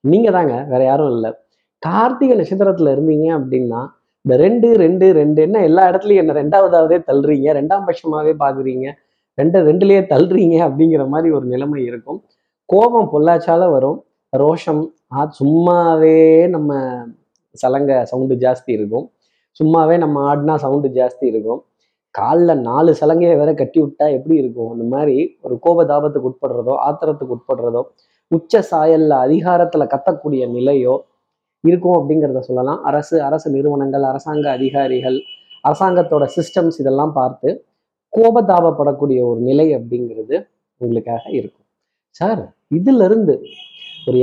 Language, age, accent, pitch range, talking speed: Tamil, 20-39, native, 135-180 Hz, 120 wpm